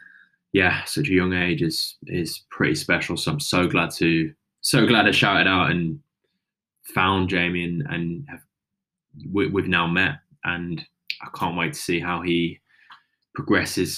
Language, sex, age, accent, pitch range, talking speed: English, male, 10-29, British, 85-95 Hz, 160 wpm